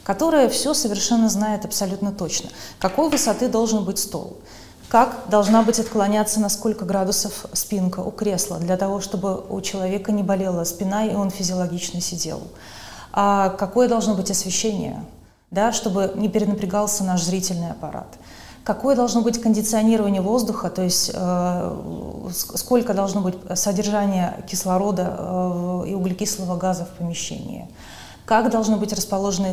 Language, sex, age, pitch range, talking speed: Russian, female, 30-49, 185-230 Hz, 135 wpm